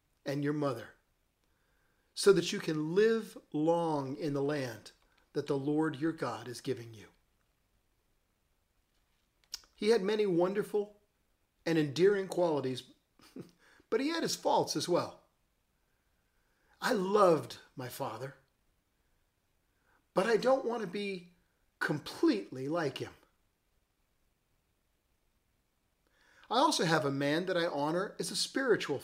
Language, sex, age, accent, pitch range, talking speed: English, male, 40-59, American, 140-200 Hz, 120 wpm